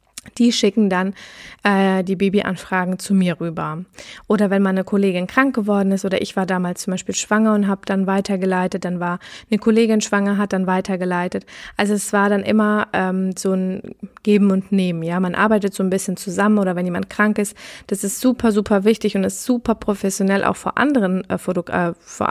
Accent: German